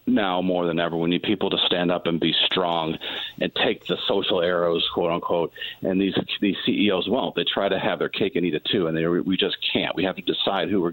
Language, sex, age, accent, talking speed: English, male, 50-69, American, 255 wpm